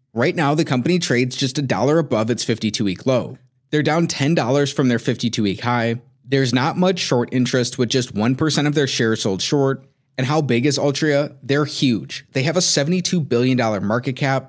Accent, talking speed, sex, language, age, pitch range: American, 200 wpm, male, English, 30-49, 120-145 Hz